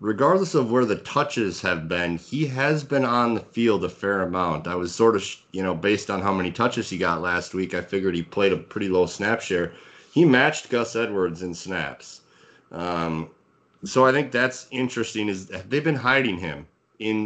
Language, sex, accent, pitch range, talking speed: English, male, American, 90-115 Hz, 205 wpm